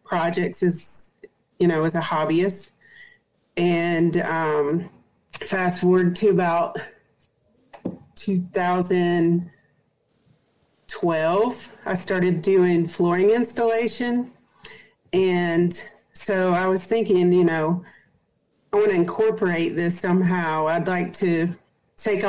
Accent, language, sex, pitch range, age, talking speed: American, English, female, 170-195 Hz, 40-59, 95 wpm